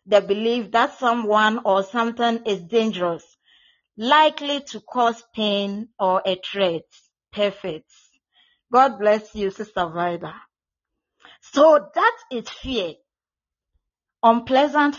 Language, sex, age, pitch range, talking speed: English, female, 40-59, 200-270 Hz, 105 wpm